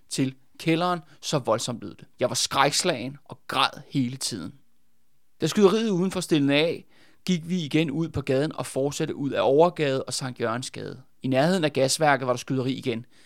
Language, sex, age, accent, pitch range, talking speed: Danish, male, 30-49, native, 130-160 Hz, 180 wpm